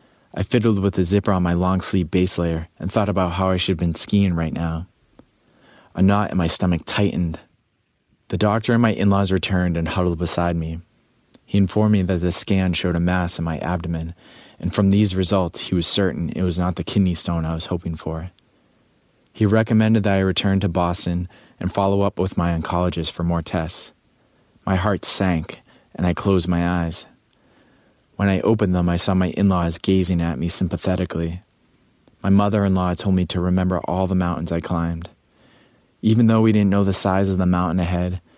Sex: male